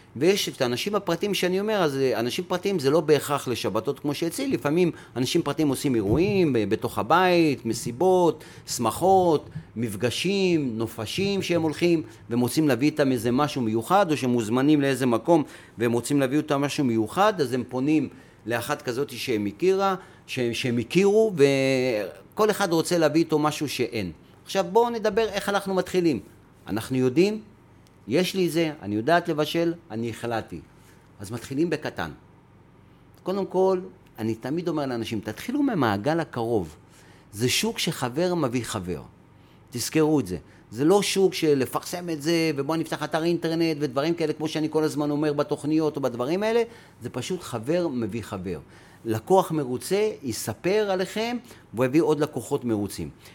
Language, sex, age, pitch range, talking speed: Hebrew, male, 40-59, 120-175 Hz, 155 wpm